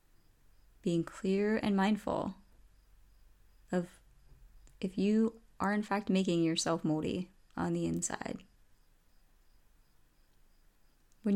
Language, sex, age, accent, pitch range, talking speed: English, female, 20-39, American, 160-205 Hz, 90 wpm